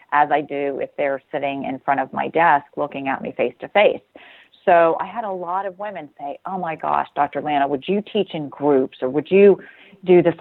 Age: 40-59